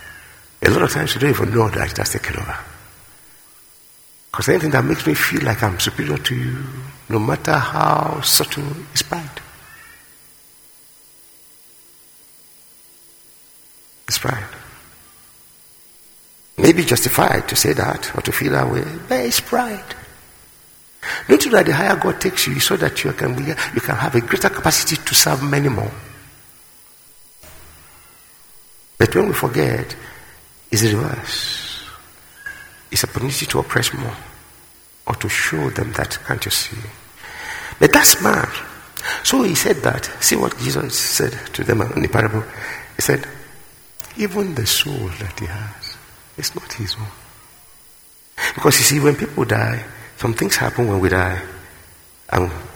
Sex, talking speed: male, 150 wpm